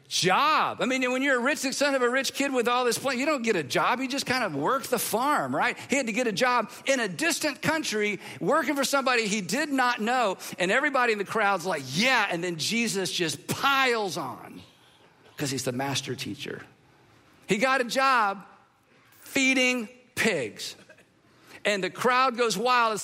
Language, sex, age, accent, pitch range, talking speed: English, male, 50-69, American, 200-255 Hz, 200 wpm